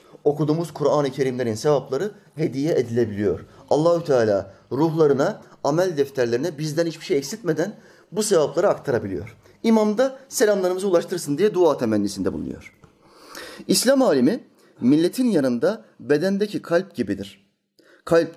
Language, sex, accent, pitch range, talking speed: Turkish, male, native, 110-165 Hz, 110 wpm